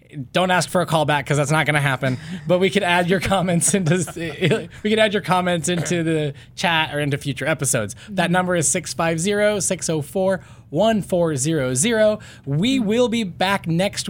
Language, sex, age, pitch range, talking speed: English, male, 20-39, 145-200 Hz, 165 wpm